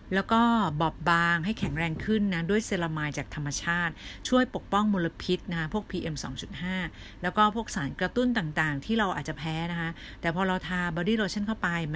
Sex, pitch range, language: female, 160-210 Hz, Thai